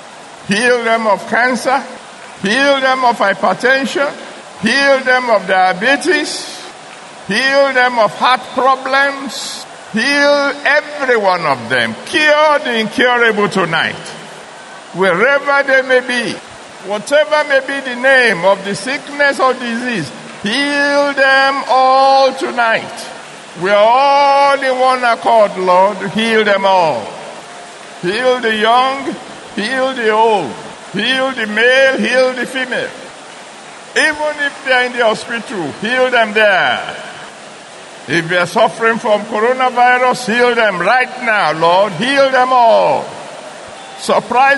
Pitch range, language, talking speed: 215-270 Hz, English, 125 wpm